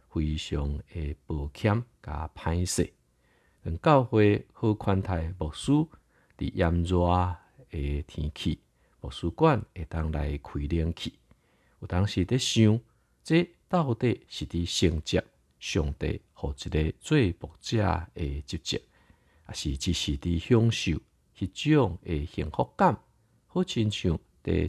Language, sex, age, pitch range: Chinese, male, 50-69, 80-105 Hz